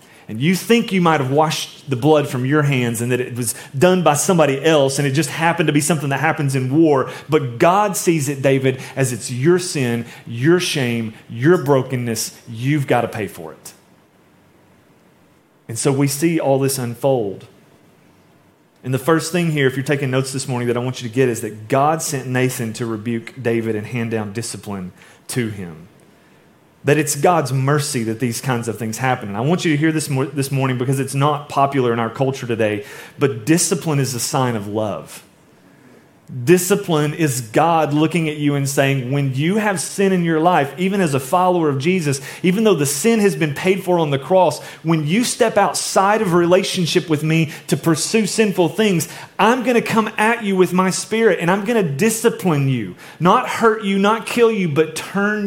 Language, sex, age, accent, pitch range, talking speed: English, male, 30-49, American, 130-180 Hz, 205 wpm